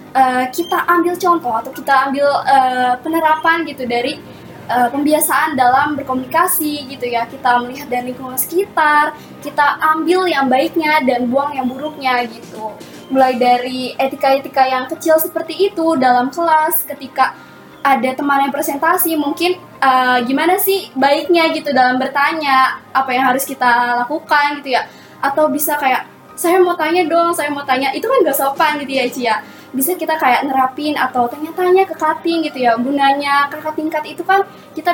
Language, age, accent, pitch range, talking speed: Indonesian, 20-39, native, 255-315 Hz, 160 wpm